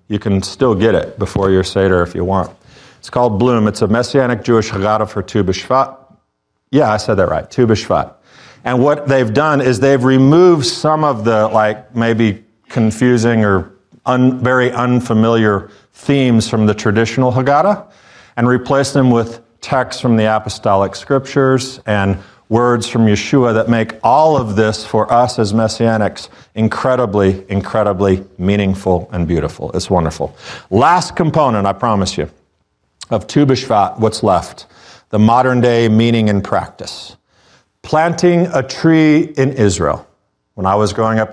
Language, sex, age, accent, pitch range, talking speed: English, male, 40-59, American, 105-130 Hz, 150 wpm